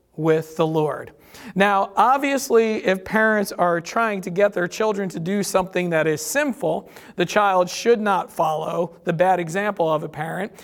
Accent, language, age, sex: American, English, 40-59, male